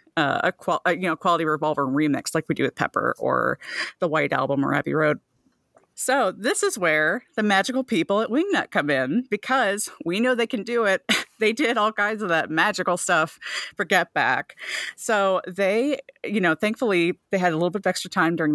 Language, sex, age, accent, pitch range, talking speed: English, female, 40-59, American, 155-200 Hz, 205 wpm